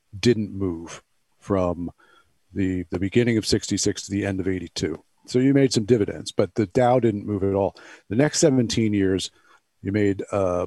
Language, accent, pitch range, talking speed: English, American, 95-115 Hz, 190 wpm